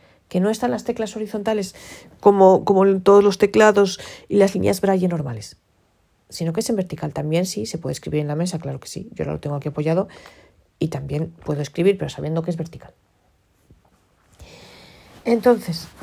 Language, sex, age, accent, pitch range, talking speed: Spanish, female, 40-59, Spanish, 145-195 Hz, 180 wpm